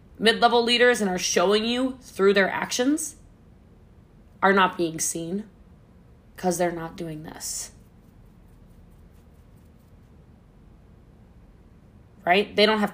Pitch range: 185-245 Hz